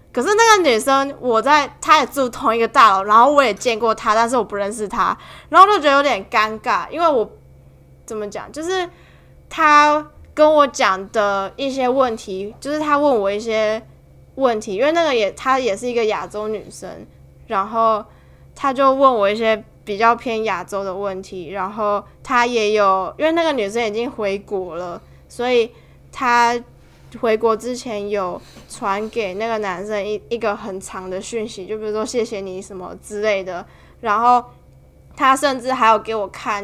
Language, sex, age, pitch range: Chinese, female, 20-39, 200-260 Hz